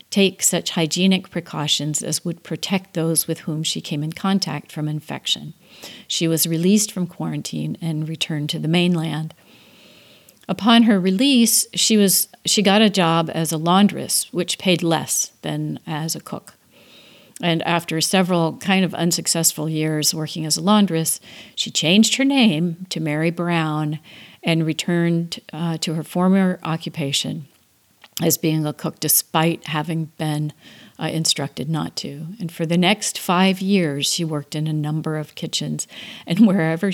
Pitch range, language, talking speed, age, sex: 155-180 Hz, English, 155 wpm, 50-69, female